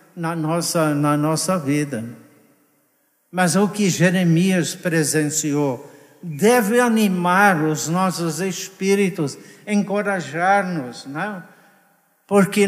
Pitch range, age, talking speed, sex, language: 140-185 Hz, 60-79, 75 wpm, male, Portuguese